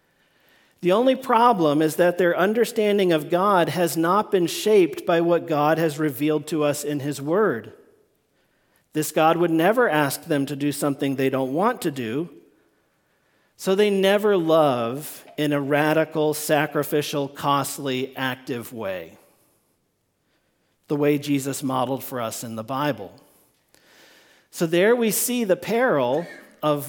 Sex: male